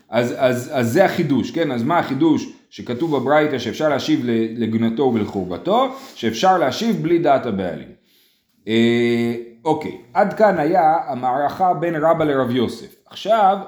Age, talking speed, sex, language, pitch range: 30-49, 135 wpm, male, Hebrew, 115-185 Hz